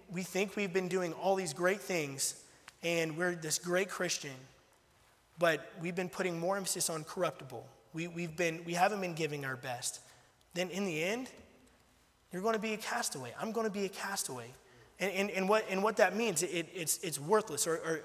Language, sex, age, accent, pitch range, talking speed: English, male, 20-39, American, 165-200 Hz, 195 wpm